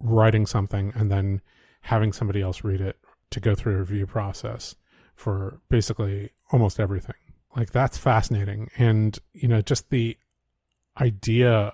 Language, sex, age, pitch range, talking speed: English, male, 30-49, 100-115 Hz, 145 wpm